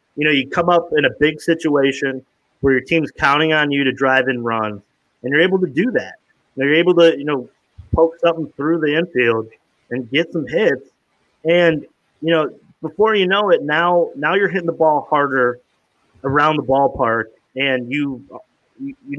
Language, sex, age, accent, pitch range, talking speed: English, male, 30-49, American, 130-170 Hz, 185 wpm